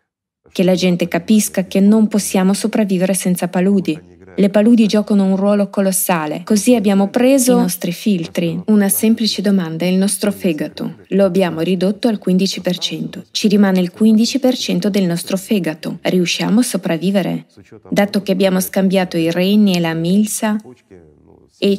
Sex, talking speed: female, 150 wpm